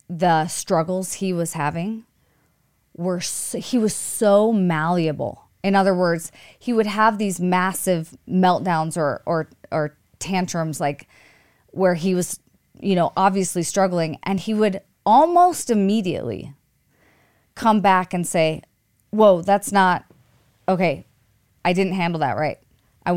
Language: English